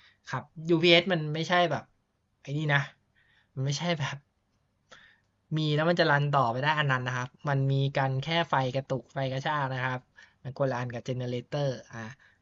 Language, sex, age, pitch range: Thai, male, 20-39, 125-155 Hz